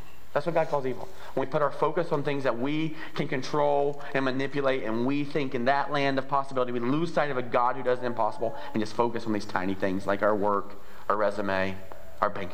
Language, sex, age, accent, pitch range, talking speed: English, male, 40-59, American, 120-165 Hz, 240 wpm